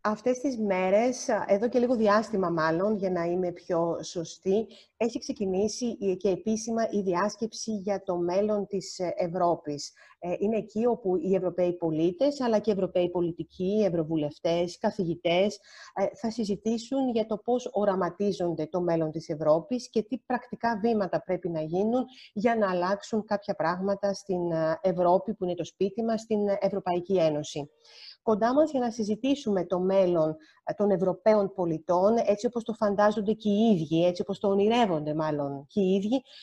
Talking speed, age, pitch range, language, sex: 155 wpm, 30-49, 180-225 Hz, Greek, female